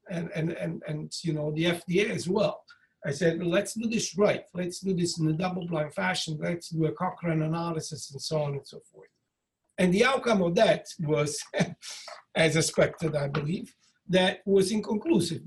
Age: 60-79